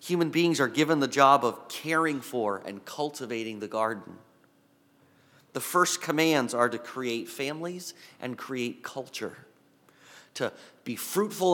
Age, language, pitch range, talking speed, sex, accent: 30-49, English, 110-145 Hz, 135 wpm, male, American